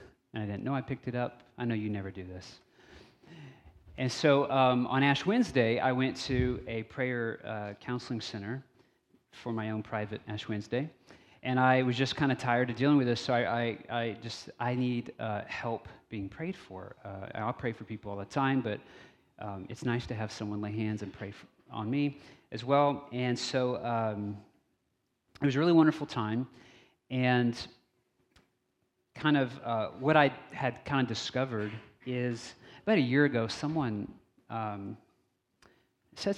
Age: 30-49